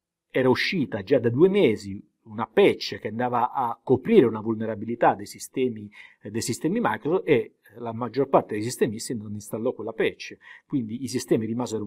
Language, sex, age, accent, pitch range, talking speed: Italian, male, 50-69, native, 105-170 Hz, 165 wpm